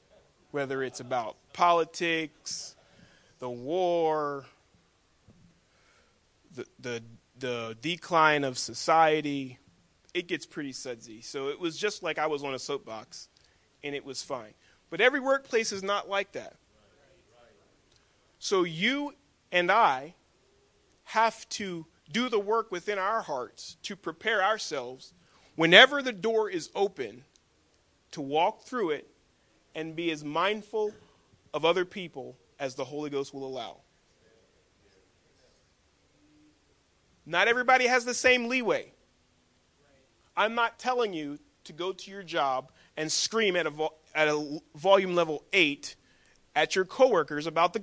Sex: male